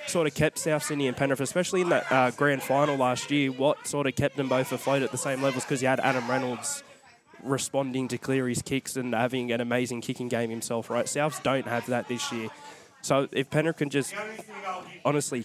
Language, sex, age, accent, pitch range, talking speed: English, male, 10-29, Australian, 120-140 Hz, 220 wpm